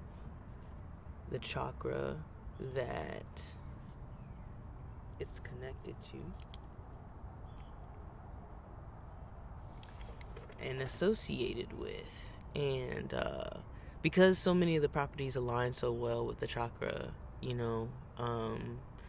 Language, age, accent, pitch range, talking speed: English, 20-39, American, 110-120 Hz, 80 wpm